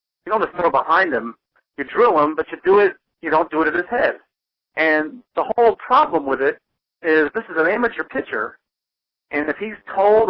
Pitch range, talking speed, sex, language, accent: 140-180 Hz, 220 wpm, male, English, American